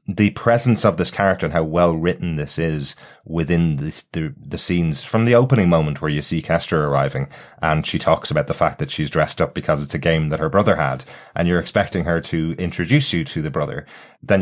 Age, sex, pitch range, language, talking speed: 30-49, male, 80-95 Hz, English, 225 wpm